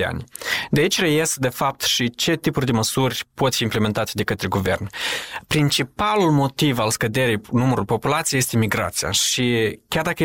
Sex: male